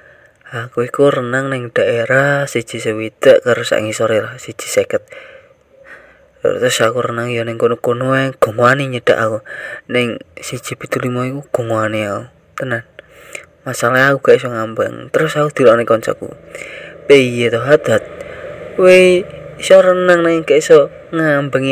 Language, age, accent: Indonesian, 20-39, native